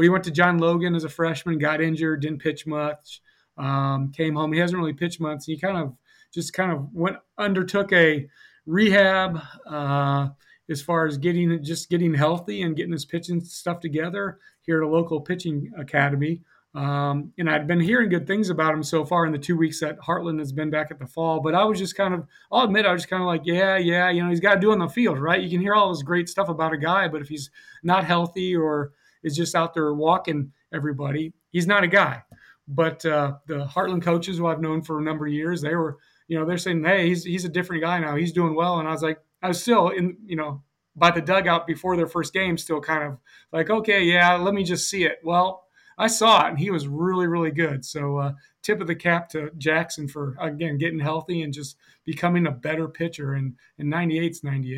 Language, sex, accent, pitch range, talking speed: English, male, American, 155-175 Hz, 240 wpm